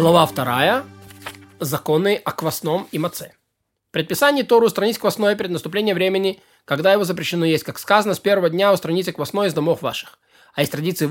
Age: 20-39